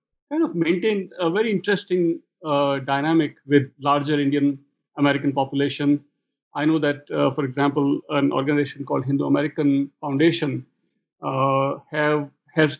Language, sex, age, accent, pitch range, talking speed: English, male, 50-69, Indian, 145-170 Hz, 130 wpm